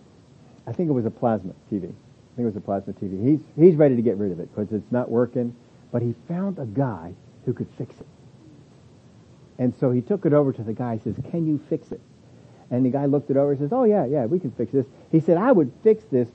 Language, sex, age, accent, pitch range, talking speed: English, male, 50-69, American, 115-145 Hz, 260 wpm